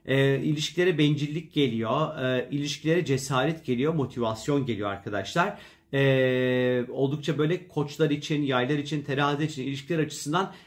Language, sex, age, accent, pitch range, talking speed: Turkish, male, 40-59, native, 135-170 Hz, 125 wpm